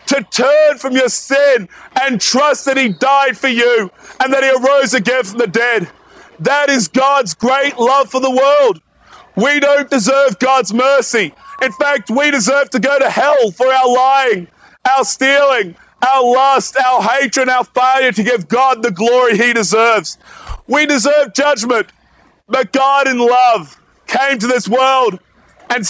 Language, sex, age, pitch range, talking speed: English, male, 30-49, 245-275 Hz, 165 wpm